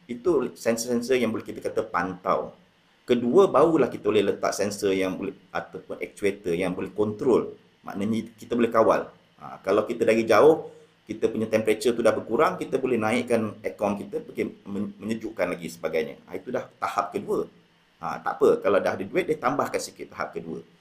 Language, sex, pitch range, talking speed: Malay, male, 105-135 Hz, 175 wpm